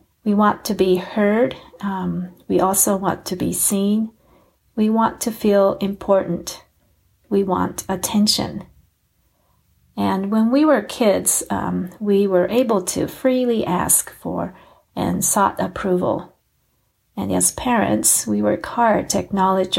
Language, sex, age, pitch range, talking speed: English, female, 40-59, 180-220 Hz, 135 wpm